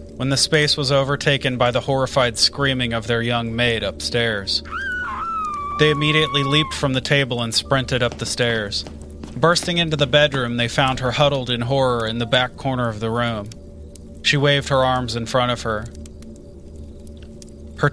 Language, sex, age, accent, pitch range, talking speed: English, male, 30-49, American, 105-140 Hz, 170 wpm